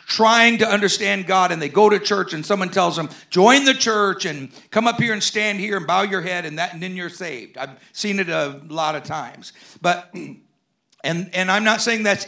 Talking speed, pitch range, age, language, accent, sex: 230 wpm, 185-235 Hz, 50-69, English, American, male